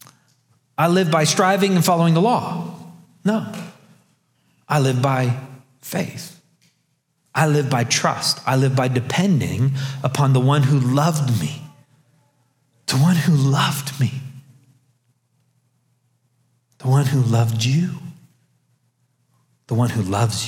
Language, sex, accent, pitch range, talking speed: English, male, American, 130-165 Hz, 120 wpm